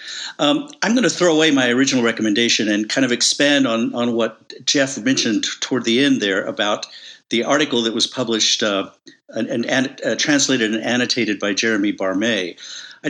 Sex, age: male, 50-69